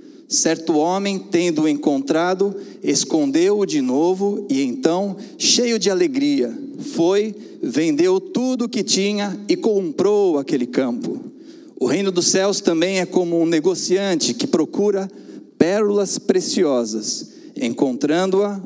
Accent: Brazilian